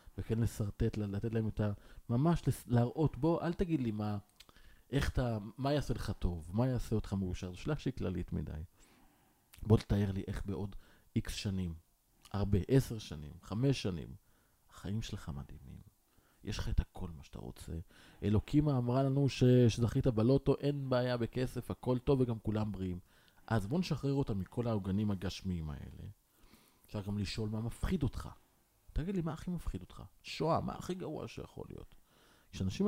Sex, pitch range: male, 95-130 Hz